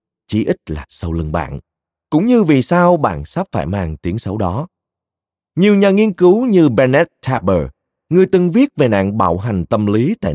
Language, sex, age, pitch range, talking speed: Vietnamese, male, 30-49, 90-135 Hz, 195 wpm